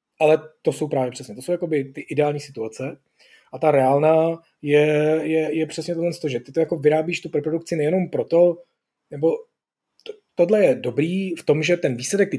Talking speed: 200 wpm